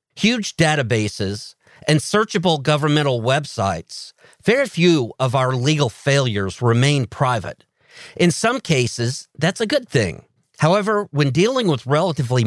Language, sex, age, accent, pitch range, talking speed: English, male, 50-69, American, 120-165 Hz, 125 wpm